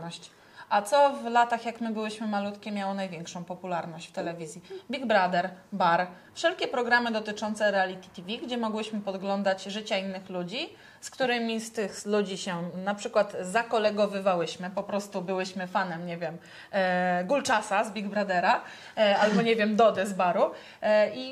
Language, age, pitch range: Polish, 30-49, 195-250 Hz